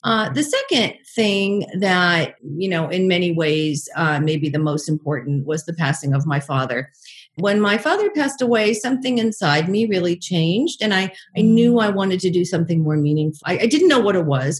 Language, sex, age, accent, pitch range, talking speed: English, female, 50-69, American, 155-215 Hz, 200 wpm